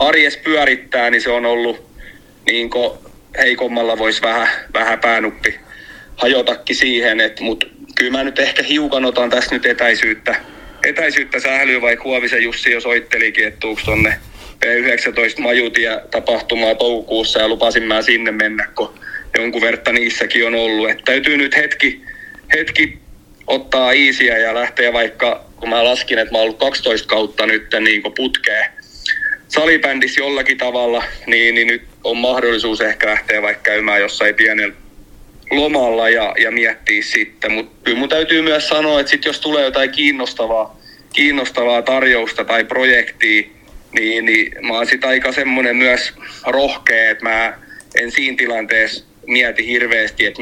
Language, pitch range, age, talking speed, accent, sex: Finnish, 115-135 Hz, 30-49, 140 wpm, native, male